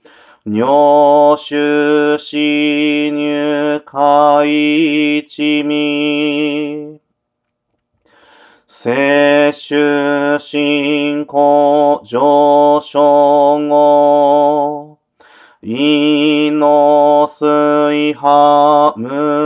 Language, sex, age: Japanese, male, 40-59